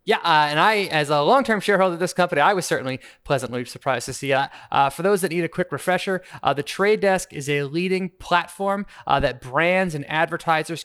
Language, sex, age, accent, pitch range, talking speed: English, male, 20-39, American, 145-185 Hz, 225 wpm